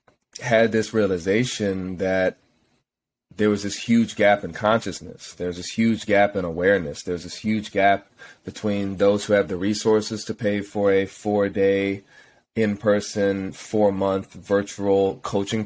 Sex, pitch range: male, 95-110 Hz